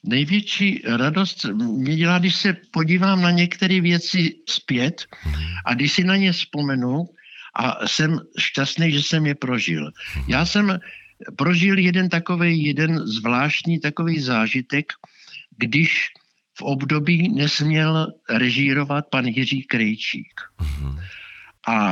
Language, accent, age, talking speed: Czech, native, 60-79, 115 wpm